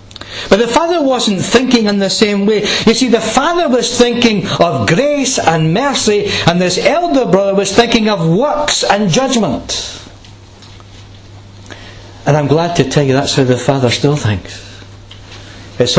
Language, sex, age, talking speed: English, male, 60-79, 160 wpm